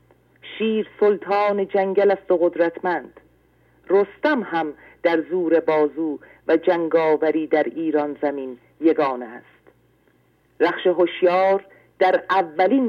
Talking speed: 100 wpm